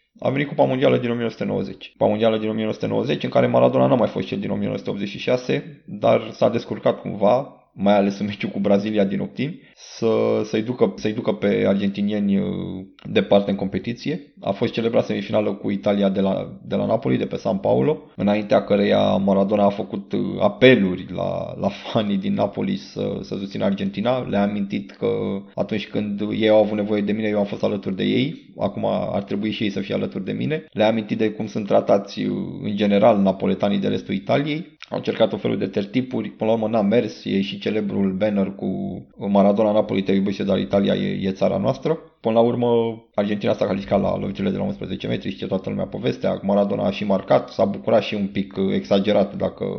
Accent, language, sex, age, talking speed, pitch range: native, Romanian, male, 20-39, 200 wpm, 100-115 Hz